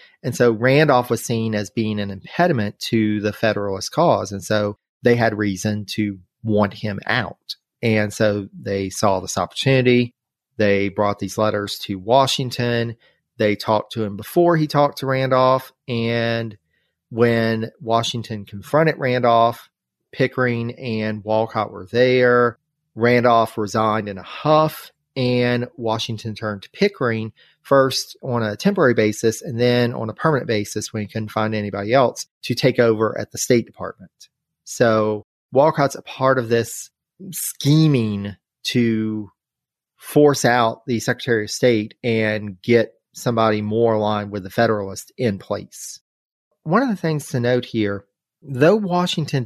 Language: English